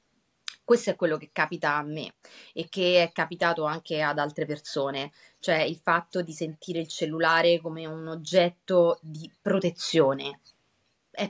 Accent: native